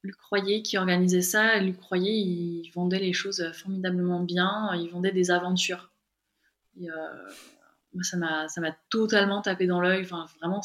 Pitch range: 180-230 Hz